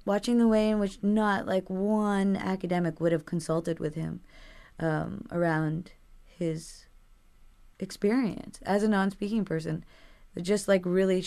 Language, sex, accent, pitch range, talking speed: English, female, American, 160-185 Hz, 135 wpm